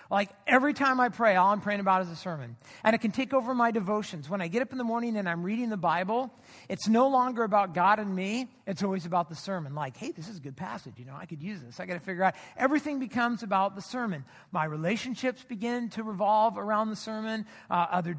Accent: American